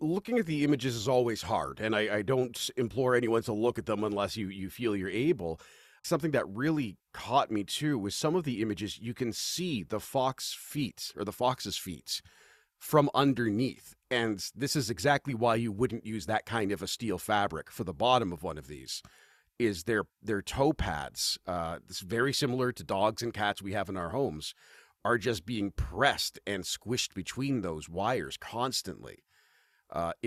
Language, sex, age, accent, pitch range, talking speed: English, male, 40-59, American, 95-125 Hz, 190 wpm